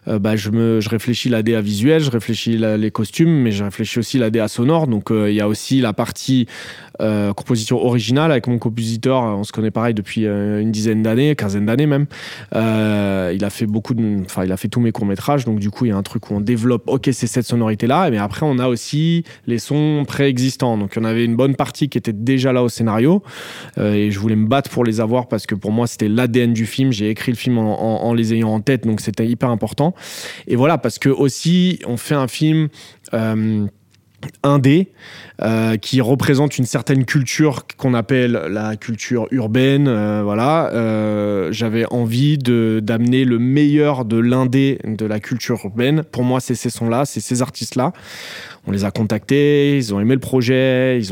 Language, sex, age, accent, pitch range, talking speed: French, male, 20-39, French, 110-130 Hz, 215 wpm